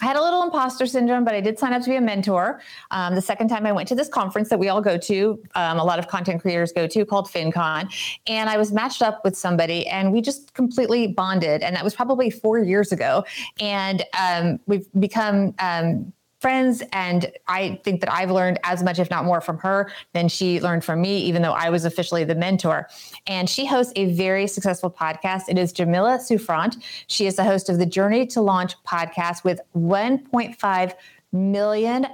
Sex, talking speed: female, 210 wpm